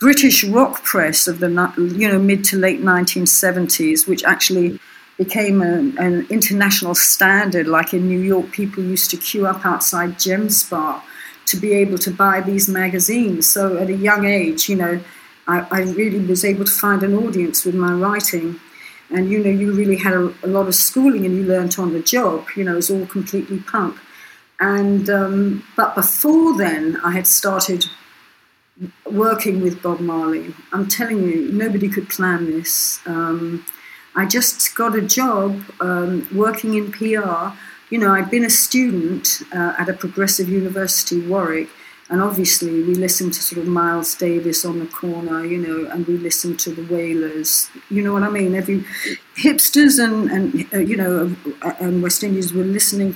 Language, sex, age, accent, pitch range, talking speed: English, female, 50-69, British, 175-200 Hz, 175 wpm